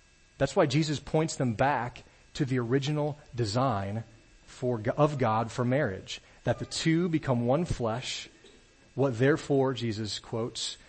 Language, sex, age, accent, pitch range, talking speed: English, male, 30-49, American, 110-135 Hz, 130 wpm